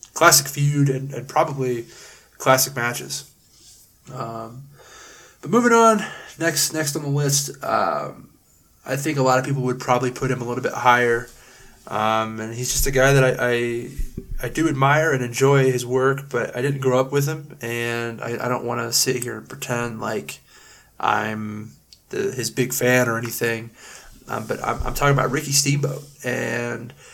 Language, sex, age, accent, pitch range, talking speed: English, male, 20-39, American, 120-140 Hz, 180 wpm